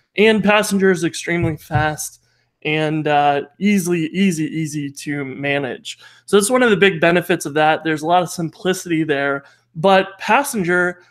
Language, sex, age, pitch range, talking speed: English, male, 20-39, 160-195 Hz, 155 wpm